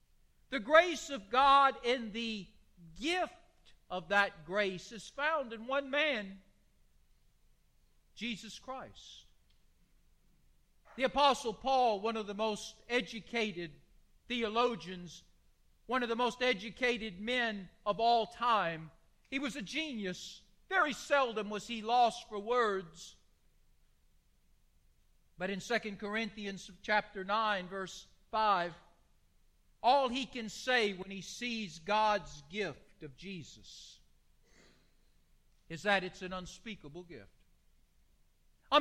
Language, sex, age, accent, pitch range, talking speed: English, male, 50-69, American, 175-245 Hz, 110 wpm